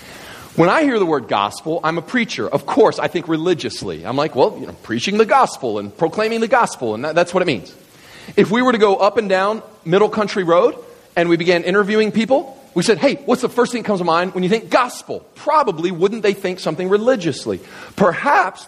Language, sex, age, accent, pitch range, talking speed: English, male, 40-59, American, 170-235 Hz, 225 wpm